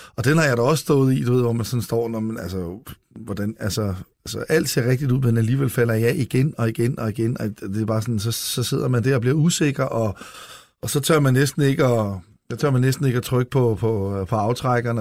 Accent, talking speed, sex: native, 270 wpm, male